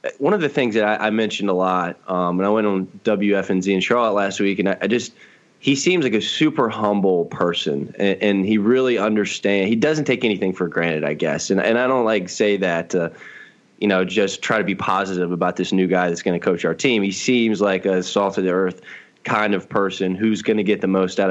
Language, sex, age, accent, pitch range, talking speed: English, male, 20-39, American, 95-105 Hz, 240 wpm